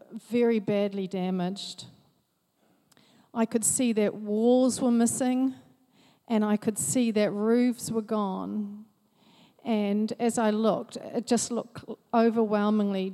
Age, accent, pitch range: 40-59, Australian, 200-230 Hz